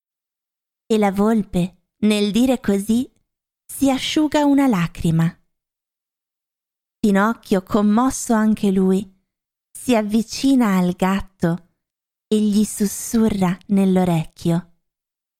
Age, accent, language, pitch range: 20-39, native, Italian, 210-295 Hz